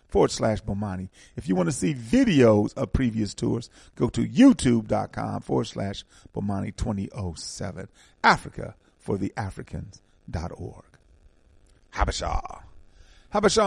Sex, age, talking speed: male, 40-59, 110 wpm